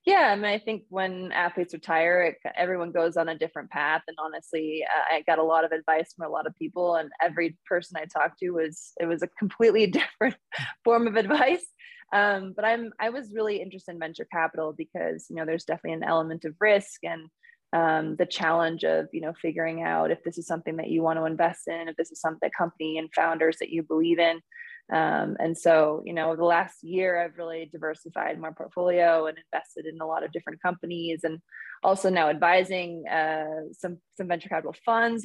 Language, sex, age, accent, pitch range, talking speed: English, female, 20-39, American, 160-185 Hz, 210 wpm